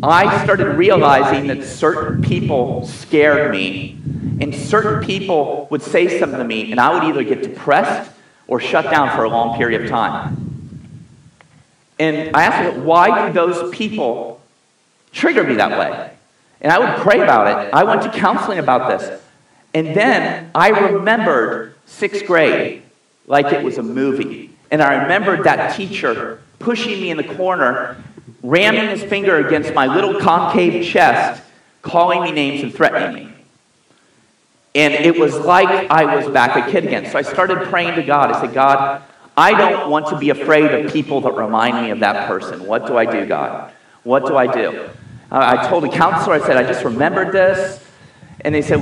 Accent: American